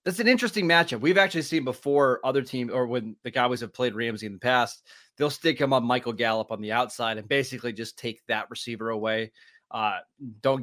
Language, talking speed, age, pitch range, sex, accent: English, 215 wpm, 20-39, 115-135 Hz, male, American